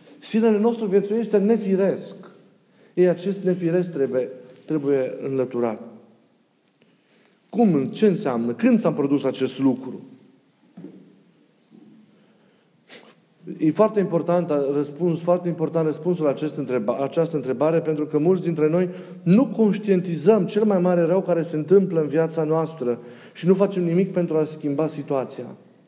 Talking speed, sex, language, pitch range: 130 wpm, male, Romanian, 145-200 Hz